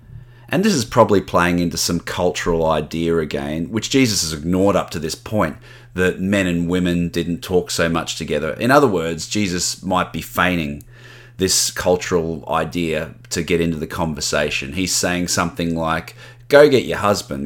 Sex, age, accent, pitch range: male, 30-49, Australian, 85-120 Hz